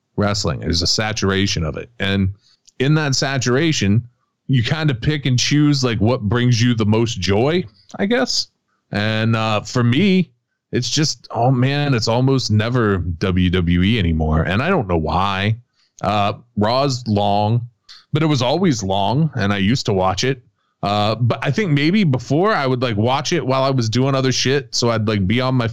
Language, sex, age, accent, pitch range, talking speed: English, male, 20-39, American, 105-135 Hz, 185 wpm